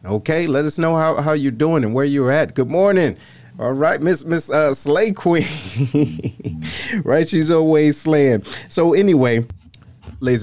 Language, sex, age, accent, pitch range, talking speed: English, male, 30-49, American, 95-135 Hz, 160 wpm